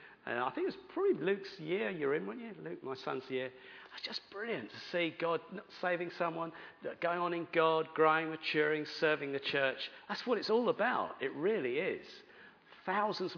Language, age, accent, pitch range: English, 40-59, British, 150-185 Hz